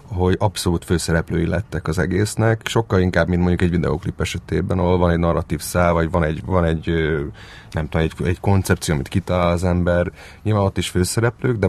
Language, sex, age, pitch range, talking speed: Hungarian, male, 30-49, 85-95 Hz, 190 wpm